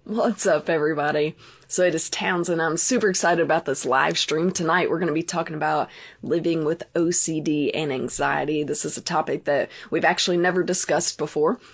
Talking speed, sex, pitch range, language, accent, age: 185 wpm, female, 165-195 Hz, English, American, 20-39